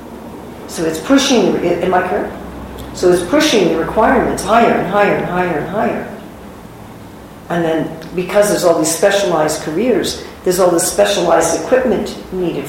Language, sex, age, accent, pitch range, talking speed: English, female, 50-69, American, 165-205 Hz, 160 wpm